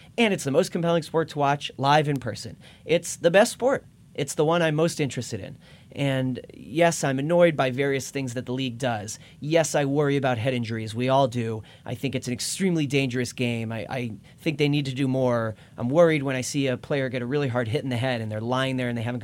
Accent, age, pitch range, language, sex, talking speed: American, 30-49, 125-160 Hz, English, male, 245 wpm